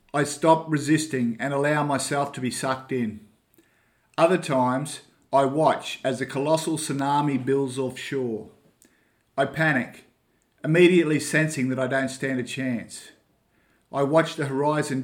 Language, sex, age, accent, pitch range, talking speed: English, male, 50-69, Australian, 125-145 Hz, 135 wpm